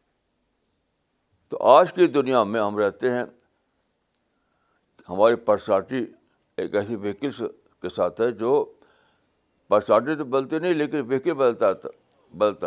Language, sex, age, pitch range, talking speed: Urdu, male, 60-79, 105-170 Hz, 120 wpm